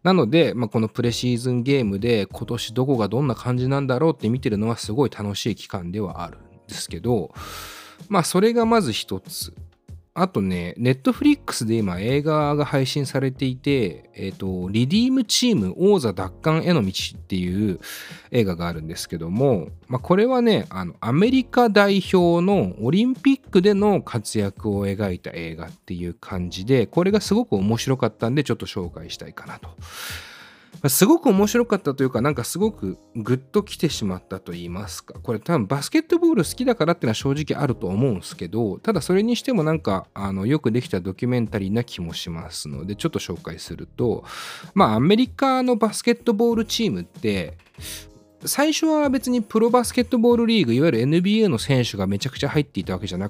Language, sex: Japanese, male